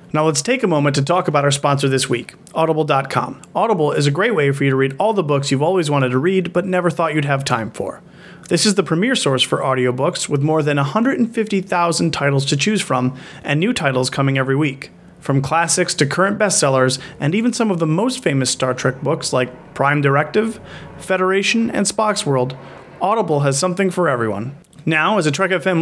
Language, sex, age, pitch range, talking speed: English, male, 30-49, 140-185 Hz, 210 wpm